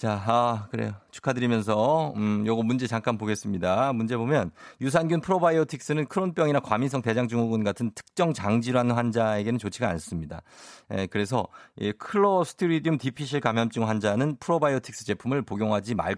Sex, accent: male, native